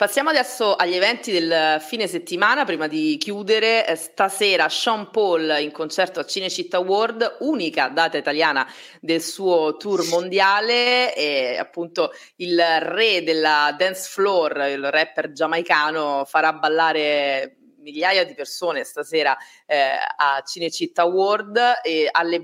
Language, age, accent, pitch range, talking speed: Italian, 30-49, native, 160-220 Hz, 125 wpm